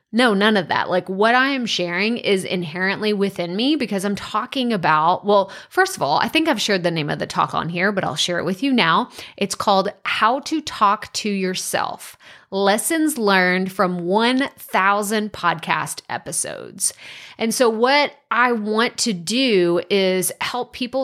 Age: 30-49